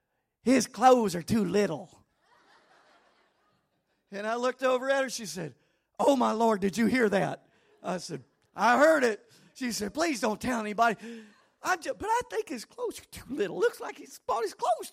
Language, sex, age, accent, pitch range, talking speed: English, male, 40-59, American, 225-305 Hz, 185 wpm